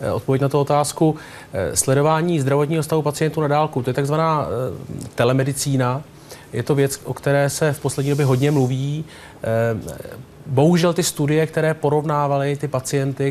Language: Czech